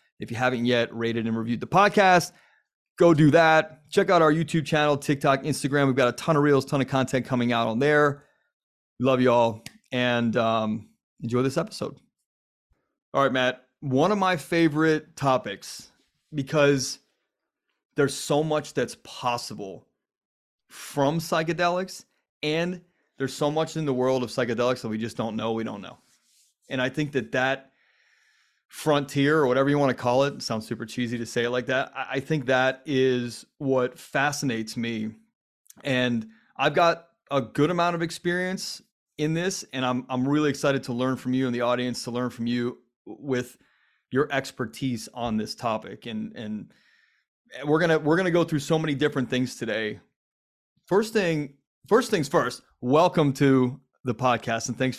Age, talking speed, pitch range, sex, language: 30-49, 170 wpm, 125-155 Hz, male, English